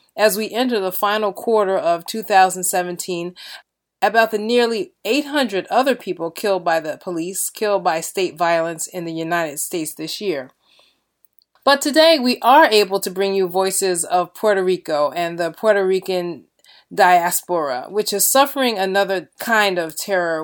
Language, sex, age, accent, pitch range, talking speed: English, female, 30-49, American, 180-220 Hz, 155 wpm